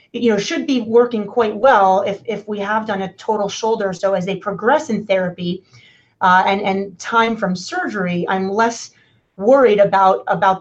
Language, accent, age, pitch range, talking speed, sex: English, American, 30-49, 190-225 Hz, 180 wpm, female